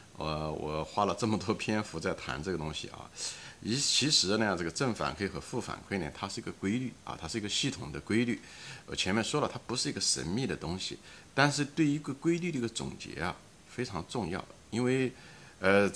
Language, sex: Chinese, male